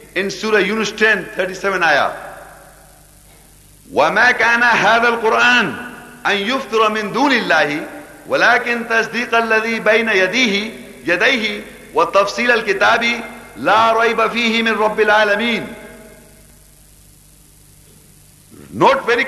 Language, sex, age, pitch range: English, male, 50-69, 210-245 Hz